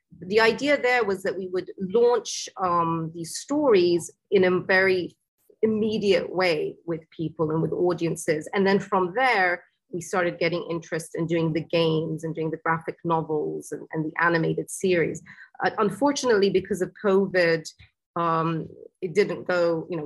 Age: 30-49